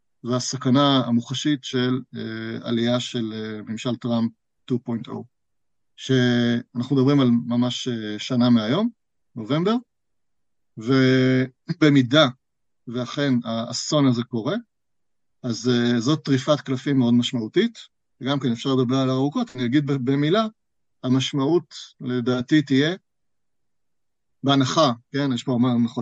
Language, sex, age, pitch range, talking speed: Hebrew, male, 30-49, 120-140 Hz, 110 wpm